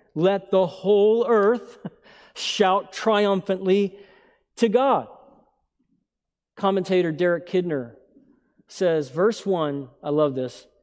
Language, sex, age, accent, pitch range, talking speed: English, male, 40-59, American, 150-200 Hz, 95 wpm